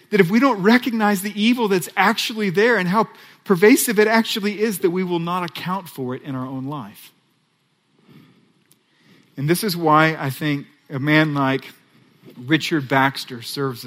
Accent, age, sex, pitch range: American, 40-59, male, 135-175 Hz